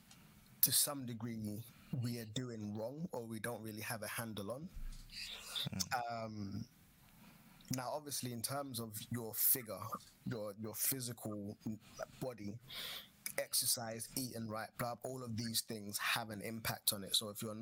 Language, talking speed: English, 150 wpm